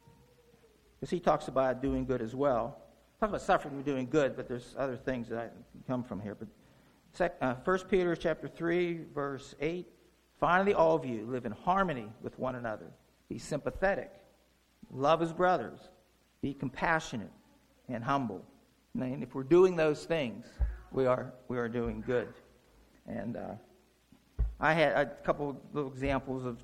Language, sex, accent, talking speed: English, male, American, 165 wpm